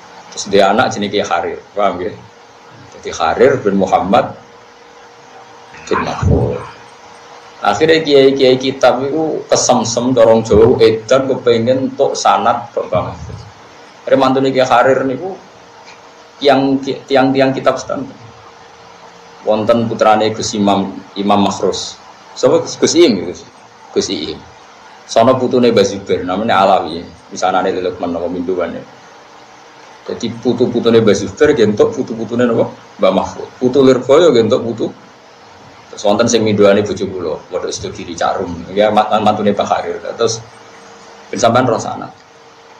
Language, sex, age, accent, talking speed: Indonesian, male, 50-69, native, 95 wpm